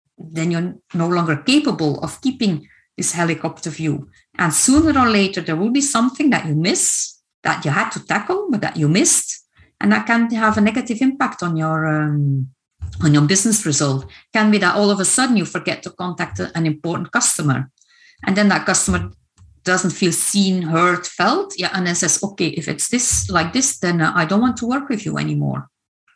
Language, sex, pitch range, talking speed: Dutch, female, 155-235 Hz, 200 wpm